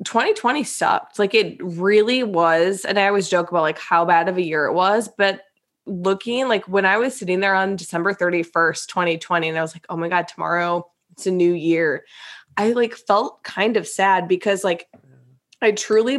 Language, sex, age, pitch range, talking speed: English, female, 20-39, 170-205 Hz, 195 wpm